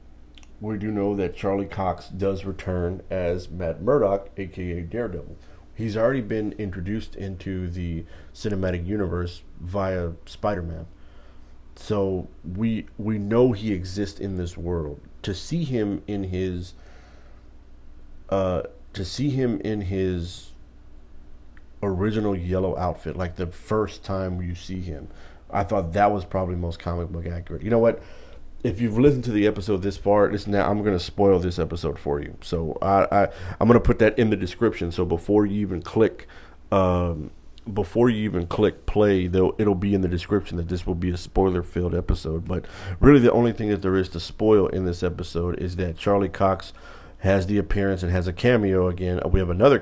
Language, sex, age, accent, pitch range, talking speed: English, male, 40-59, American, 85-100 Hz, 175 wpm